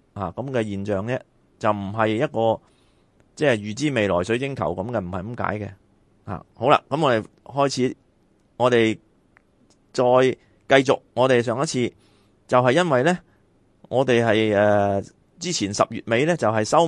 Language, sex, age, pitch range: Chinese, male, 30-49, 105-130 Hz